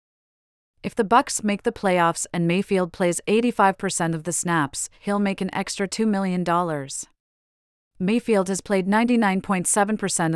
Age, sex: 40-59, female